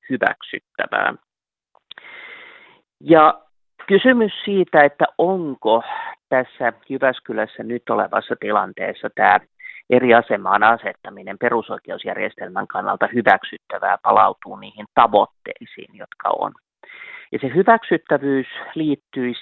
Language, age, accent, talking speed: Finnish, 30-49, native, 85 wpm